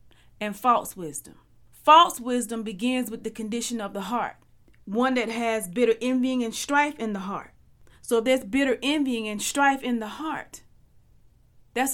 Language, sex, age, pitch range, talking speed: English, female, 30-49, 220-260 Hz, 165 wpm